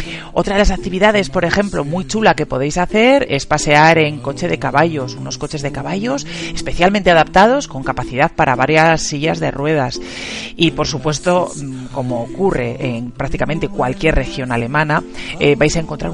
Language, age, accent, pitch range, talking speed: Spanish, 40-59, Spanish, 135-180 Hz, 165 wpm